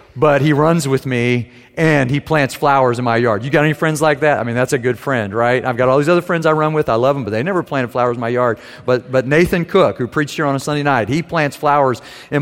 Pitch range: 125-160 Hz